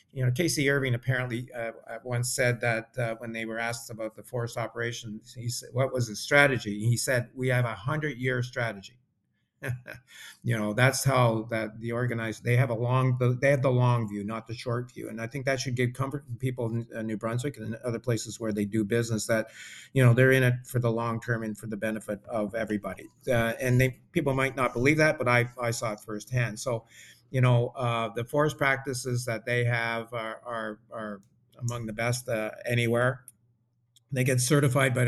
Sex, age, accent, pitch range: male, 50-69, American, 115-130 Hz